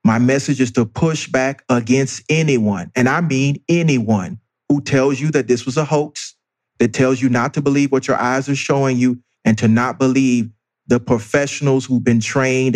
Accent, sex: American, male